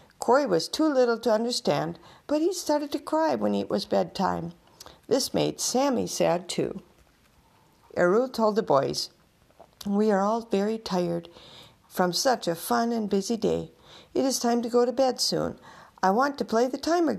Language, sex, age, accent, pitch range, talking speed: English, female, 50-69, American, 175-245 Hz, 175 wpm